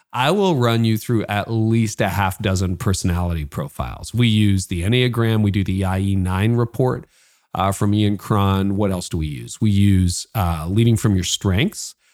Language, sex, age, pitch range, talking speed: English, male, 40-59, 100-120 Hz, 185 wpm